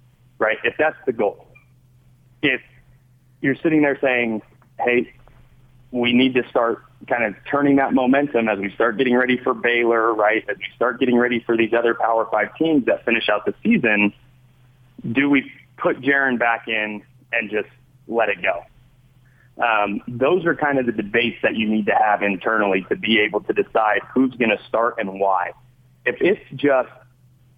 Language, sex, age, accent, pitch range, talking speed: English, male, 30-49, American, 110-130 Hz, 180 wpm